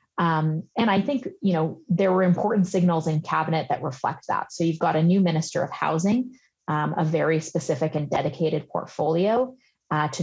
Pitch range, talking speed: 160-195 Hz, 190 wpm